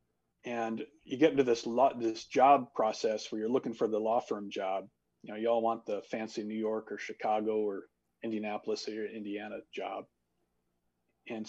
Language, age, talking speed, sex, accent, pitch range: English, 40-59, 180 wpm, male, American, 100-130 Hz